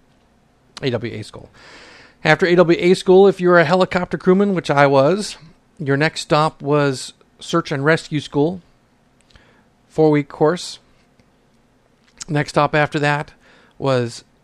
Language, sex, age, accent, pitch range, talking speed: English, male, 50-69, American, 120-155 Hz, 120 wpm